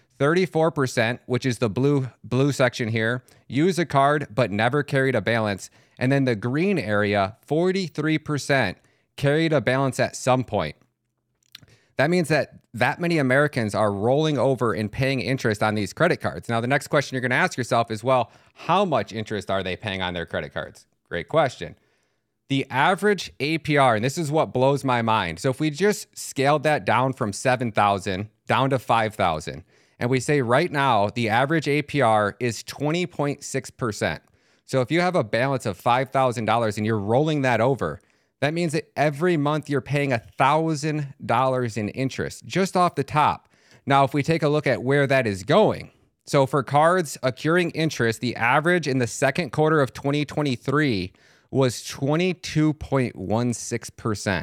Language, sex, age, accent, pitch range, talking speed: English, male, 30-49, American, 115-150 Hz, 165 wpm